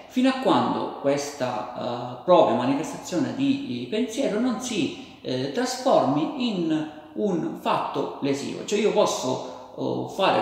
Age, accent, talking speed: 50-69, native, 130 wpm